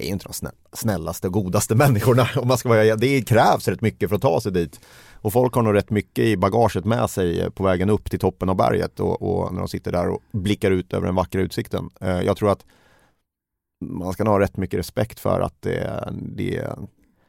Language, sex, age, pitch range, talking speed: Swedish, male, 30-49, 90-110 Hz, 200 wpm